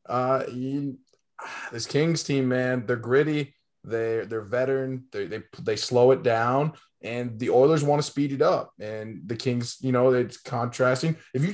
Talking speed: 175 wpm